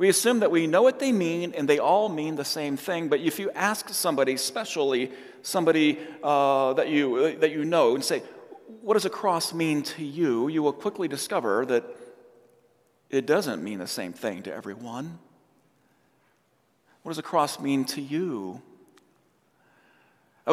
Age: 40-59